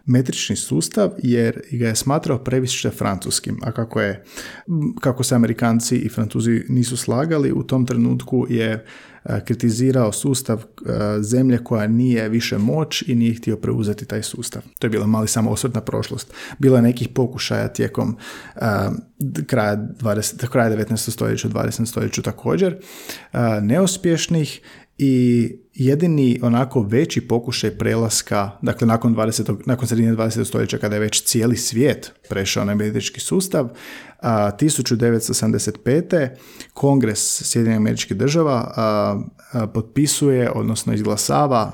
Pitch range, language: 110-130 Hz, Croatian